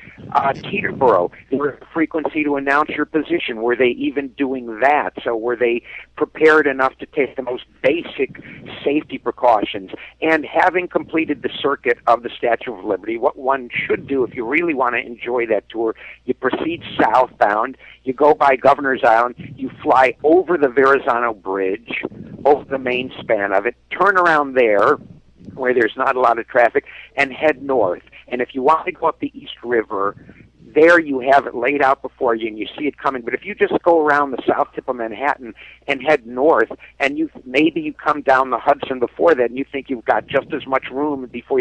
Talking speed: 200 wpm